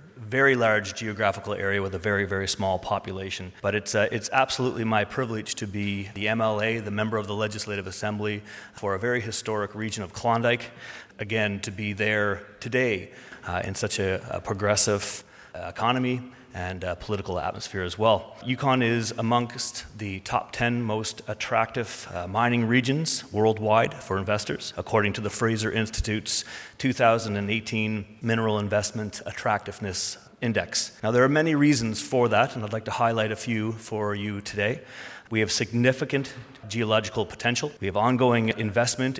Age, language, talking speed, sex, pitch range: 30-49, English, 155 wpm, male, 105-120 Hz